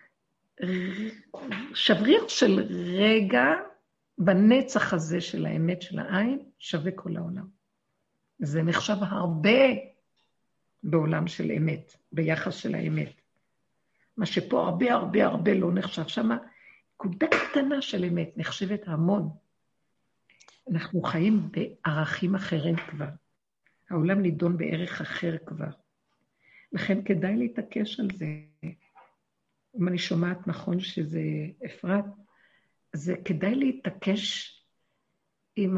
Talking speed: 100 wpm